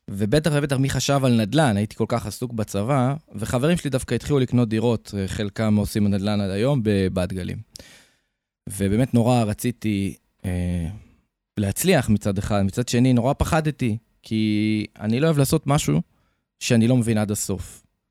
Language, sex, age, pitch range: Hebrew, male, 20-39, 100-125 Hz